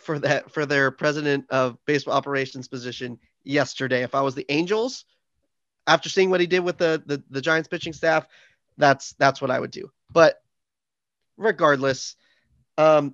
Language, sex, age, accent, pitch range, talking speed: English, male, 30-49, American, 135-180 Hz, 165 wpm